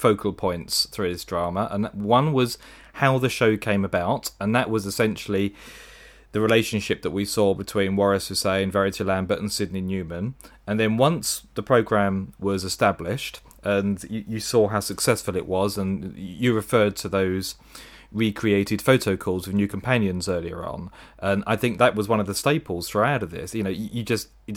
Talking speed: 185 wpm